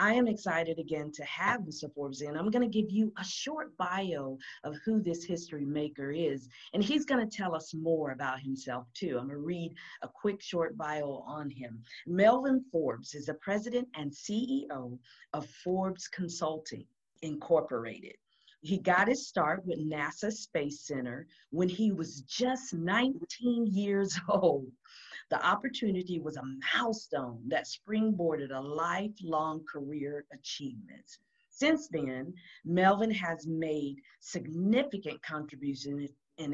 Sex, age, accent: female, 50-69, American